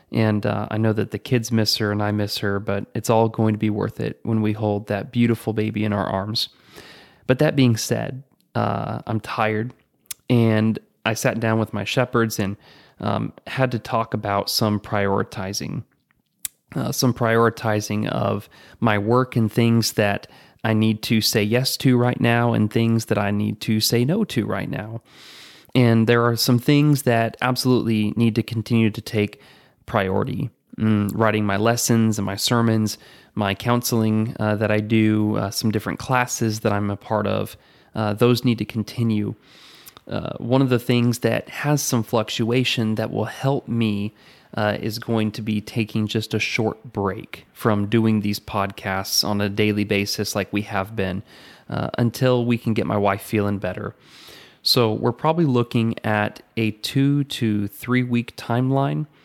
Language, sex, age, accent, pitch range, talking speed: English, male, 30-49, American, 105-120 Hz, 175 wpm